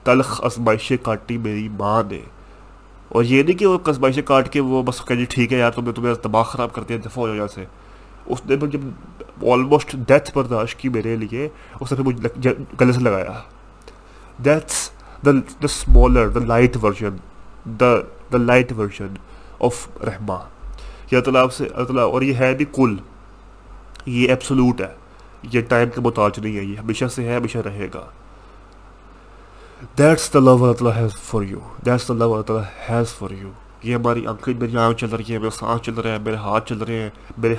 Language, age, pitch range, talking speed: Urdu, 30-49, 110-130 Hz, 150 wpm